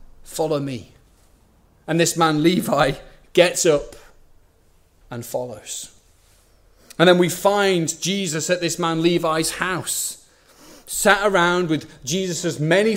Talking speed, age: 115 wpm, 30-49